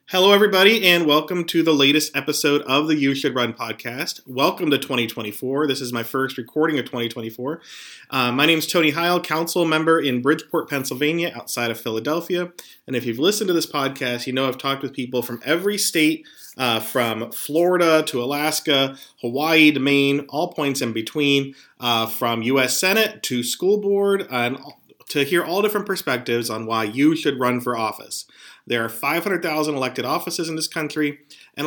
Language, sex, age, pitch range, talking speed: English, male, 40-59, 125-165 Hz, 180 wpm